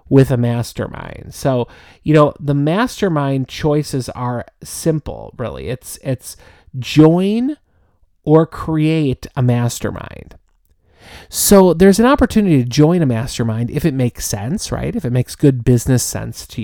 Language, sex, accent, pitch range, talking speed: English, male, American, 125-165 Hz, 140 wpm